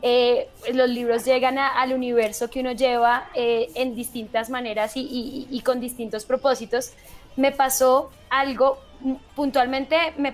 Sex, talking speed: female, 145 wpm